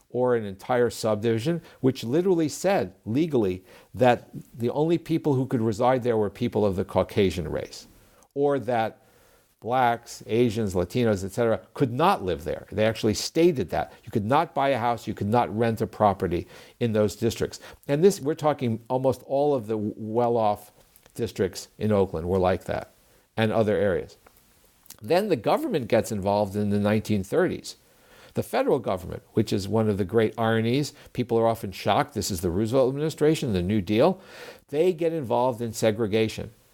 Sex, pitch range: male, 105-130 Hz